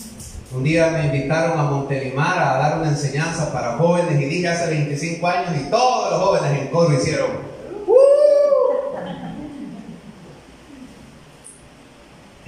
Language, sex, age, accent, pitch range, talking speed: Spanish, male, 30-49, Mexican, 150-255 Hz, 120 wpm